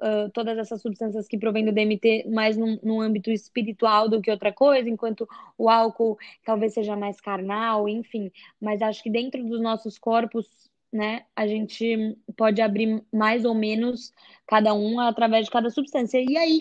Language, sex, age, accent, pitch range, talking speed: Portuguese, female, 10-29, Brazilian, 220-255 Hz, 165 wpm